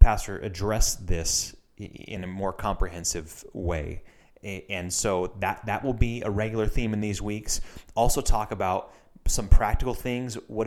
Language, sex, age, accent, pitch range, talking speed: English, male, 30-49, American, 90-110 Hz, 150 wpm